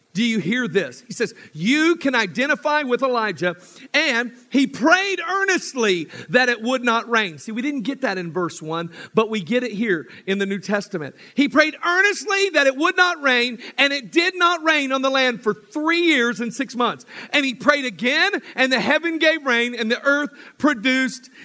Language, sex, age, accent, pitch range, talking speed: English, male, 40-59, American, 210-300 Hz, 200 wpm